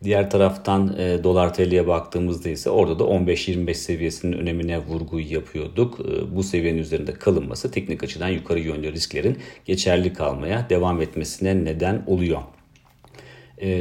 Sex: male